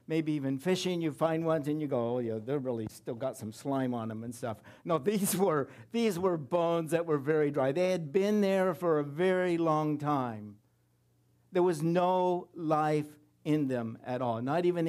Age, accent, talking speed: 60-79, American, 200 wpm